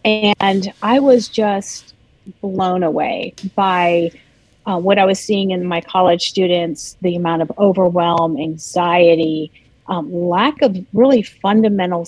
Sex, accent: female, American